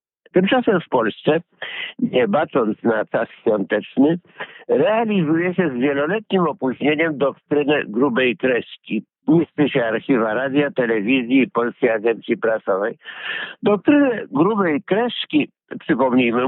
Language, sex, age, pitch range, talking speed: Polish, male, 60-79, 125-175 Hz, 105 wpm